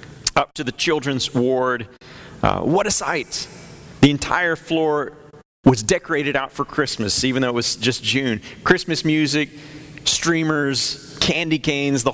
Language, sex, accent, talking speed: English, male, American, 145 wpm